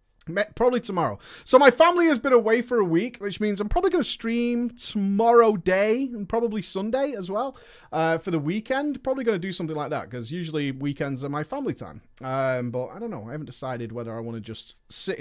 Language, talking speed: English, 225 wpm